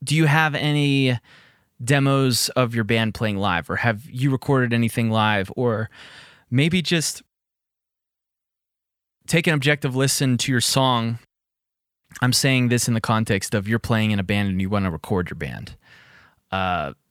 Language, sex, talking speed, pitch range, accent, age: English, male, 160 wpm, 95-130 Hz, American, 20-39